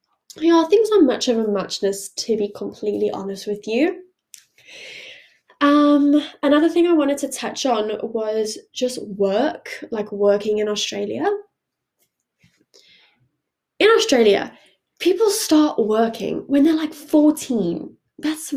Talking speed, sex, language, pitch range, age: 130 wpm, female, English, 215-300 Hz, 10-29